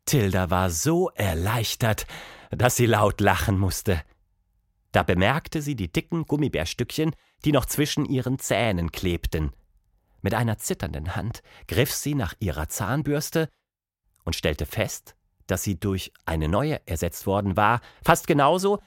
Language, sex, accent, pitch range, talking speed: English, male, German, 95-160 Hz, 135 wpm